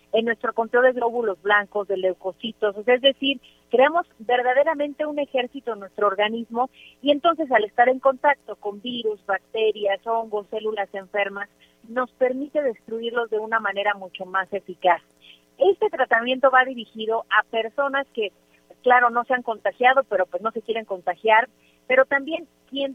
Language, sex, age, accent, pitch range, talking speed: Spanish, female, 40-59, Mexican, 210-260 Hz, 155 wpm